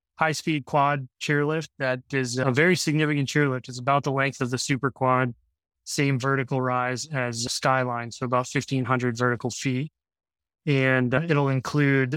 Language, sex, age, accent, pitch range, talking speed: English, male, 20-39, American, 125-145 Hz, 160 wpm